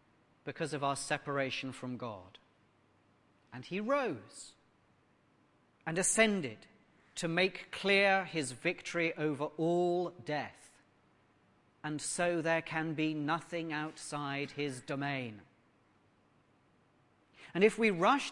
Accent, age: British, 40-59